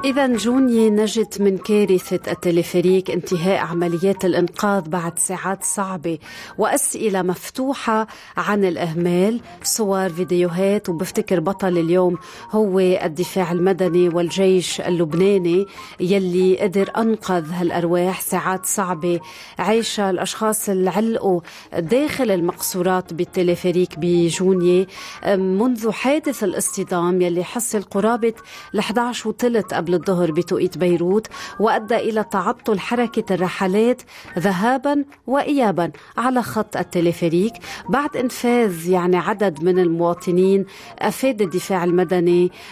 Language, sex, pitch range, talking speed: Arabic, female, 180-215 Hz, 95 wpm